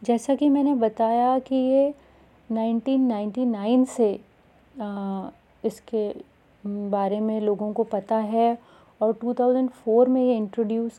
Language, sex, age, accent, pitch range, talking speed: Hindi, female, 30-49, native, 210-250 Hz, 115 wpm